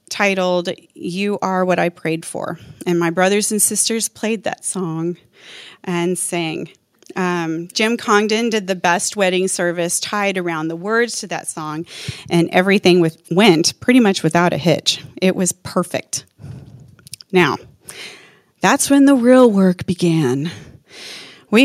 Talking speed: 140 wpm